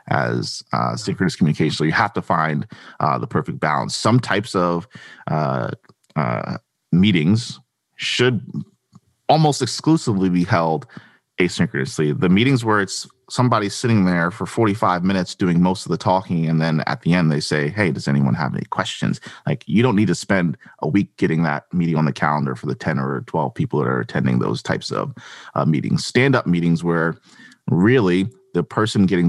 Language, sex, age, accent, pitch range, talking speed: English, male, 30-49, American, 75-100 Hz, 180 wpm